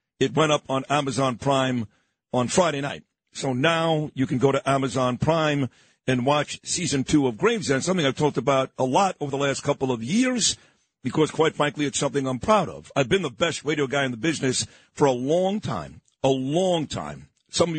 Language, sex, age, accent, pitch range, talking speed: English, male, 50-69, American, 135-165 Hz, 205 wpm